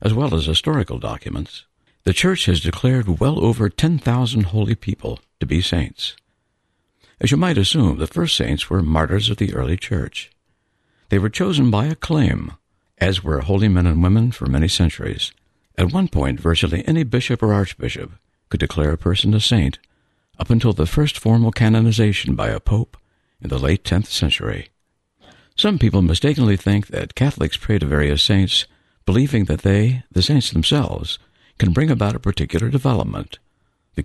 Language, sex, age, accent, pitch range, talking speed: English, male, 60-79, American, 85-115 Hz, 165 wpm